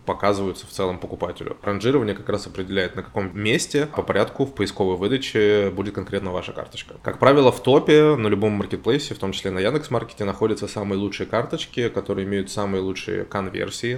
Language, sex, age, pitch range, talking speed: Russian, male, 20-39, 95-115 Hz, 175 wpm